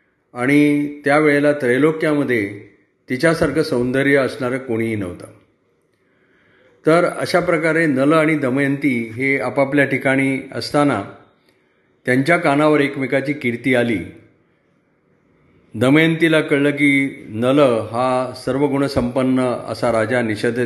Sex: male